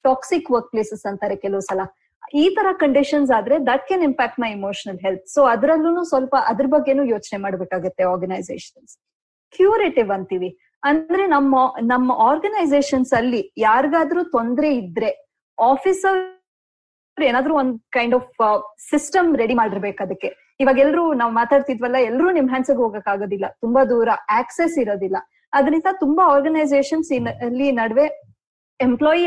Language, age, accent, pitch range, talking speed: Kannada, 20-39, native, 230-295 Hz, 115 wpm